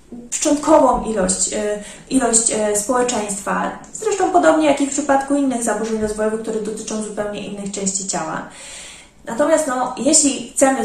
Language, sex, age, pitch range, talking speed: Polish, female, 20-39, 210-275 Hz, 125 wpm